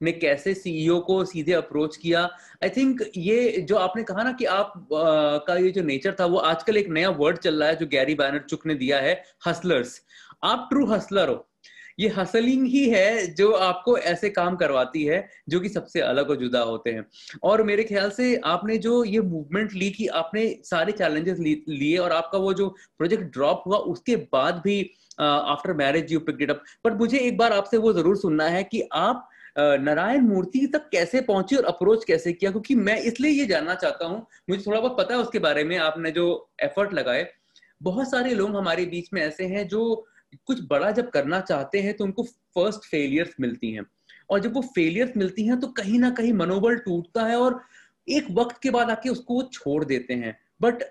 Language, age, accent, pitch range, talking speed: English, 30-49, Indian, 165-230 Hz, 165 wpm